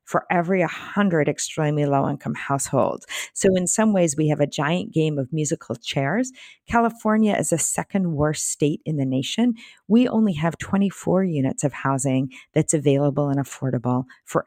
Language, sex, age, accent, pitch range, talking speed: English, female, 40-59, American, 145-205 Hz, 160 wpm